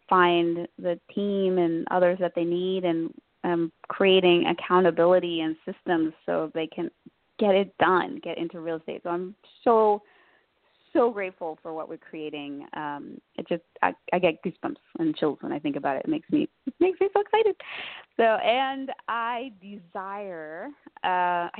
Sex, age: female, 20-39